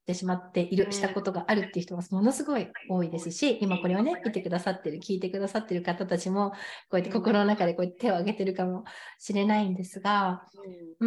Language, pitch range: Japanese, 175-235 Hz